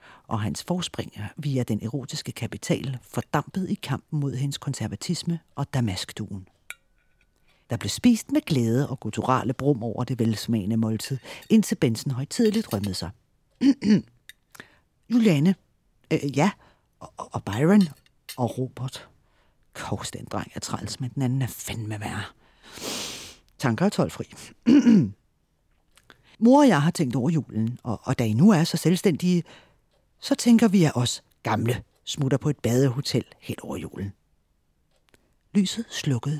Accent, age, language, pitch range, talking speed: native, 40-59, Danish, 110-160 Hz, 135 wpm